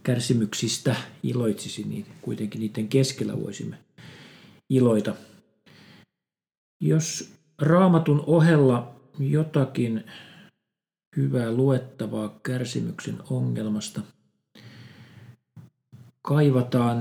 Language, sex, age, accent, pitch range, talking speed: Finnish, male, 40-59, native, 110-135 Hz, 60 wpm